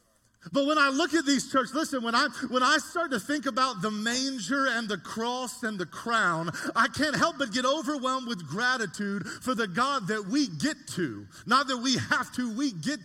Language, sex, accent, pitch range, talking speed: English, male, American, 210-270 Hz, 210 wpm